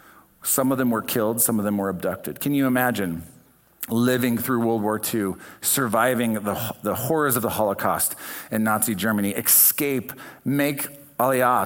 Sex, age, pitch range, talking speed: male, 50-69, 95-120 Hz, 160 wpm